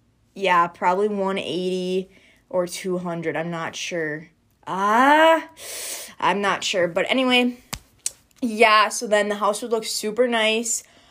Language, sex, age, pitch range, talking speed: English, female, 20-39, 175-225 Hz, 130 wpm